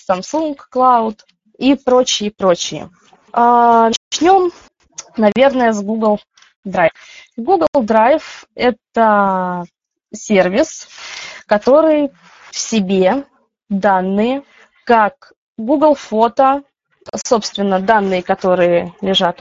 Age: 20-39